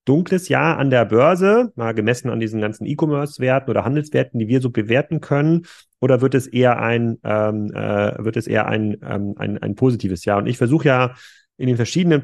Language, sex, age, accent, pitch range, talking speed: German, male, 30-49, German, 115-145 Hz, 195 wpm